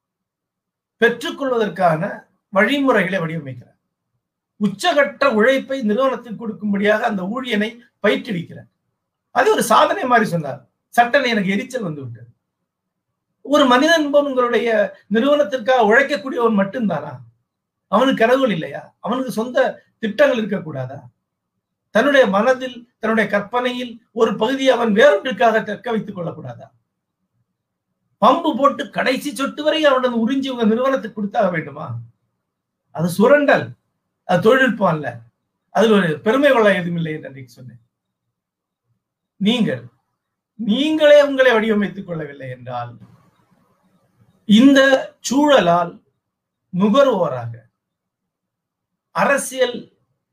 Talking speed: 90 wpm